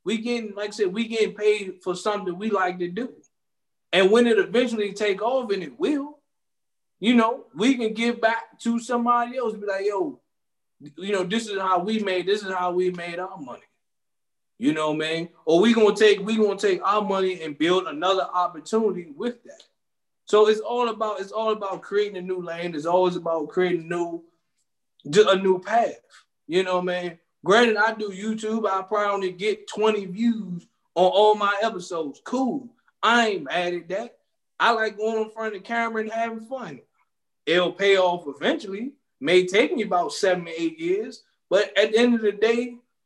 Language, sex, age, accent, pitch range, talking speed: English, male, 20-39, American, 180-220 Hz, 195 wpm